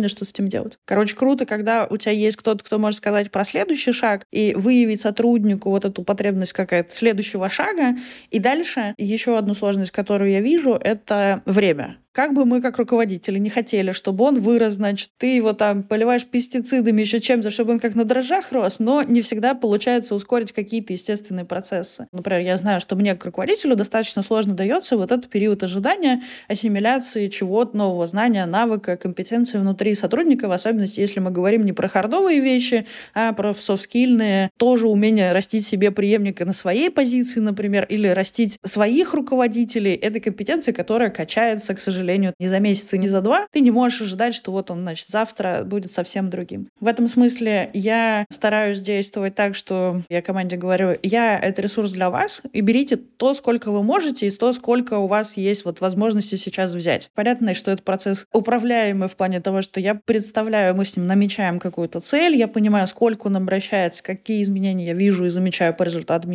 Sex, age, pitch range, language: female, 20-39, 195-235 Hz, Russian